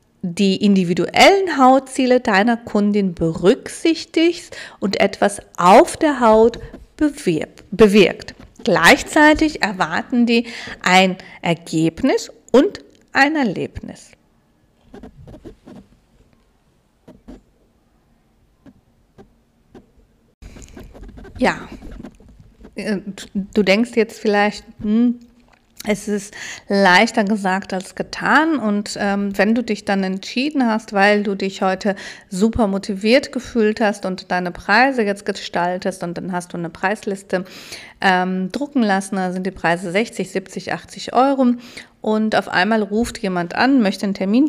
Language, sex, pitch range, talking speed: German, female, 190-245 Hz, 110 wpm